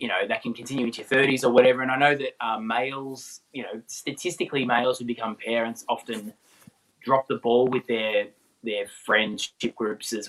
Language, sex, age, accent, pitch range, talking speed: English, male, 20-39, Australian, 105-135 Hz, 190 wpm